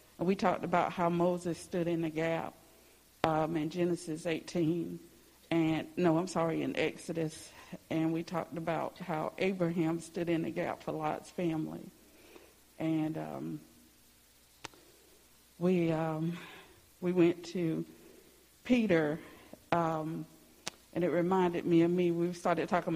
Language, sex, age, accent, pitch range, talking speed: English, female, 50-69, American, 160-185 Hz, 130 wpm